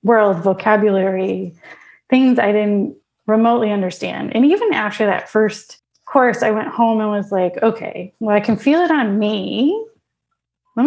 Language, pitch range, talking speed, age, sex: English, 200-245 Hz, 155 wpm, 20-39, female